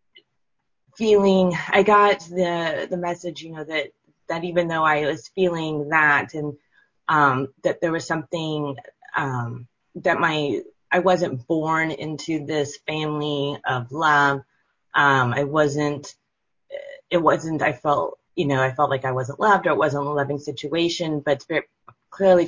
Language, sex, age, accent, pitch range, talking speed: English, female, 30-49, American, 140-165 Hz, 150 wpm